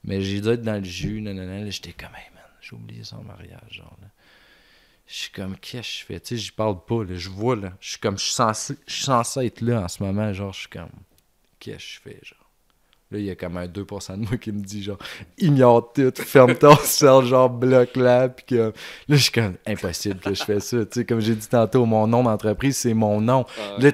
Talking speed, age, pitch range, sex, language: 240 wpm, 30-49, 95-120 Hz, male, French